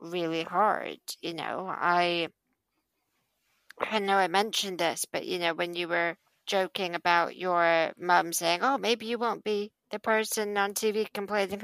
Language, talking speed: English, 160 wpm